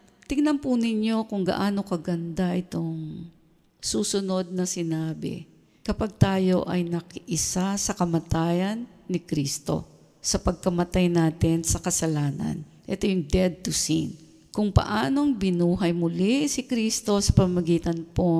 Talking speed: 120 wpm